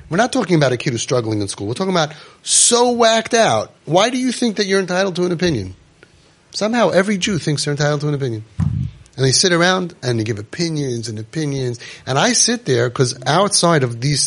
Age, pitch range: 30-49, 145-205 Hz